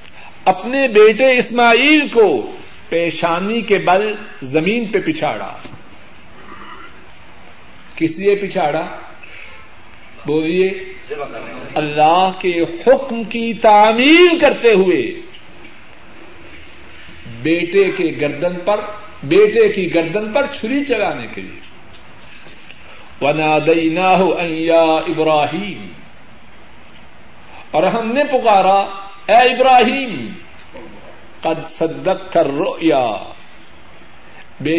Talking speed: 85 wpm